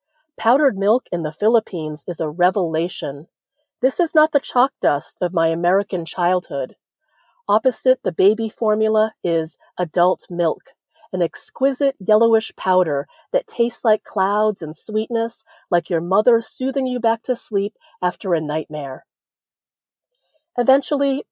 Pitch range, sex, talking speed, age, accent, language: 175-230 Hz, female, 130 wpm, 40-59, American, English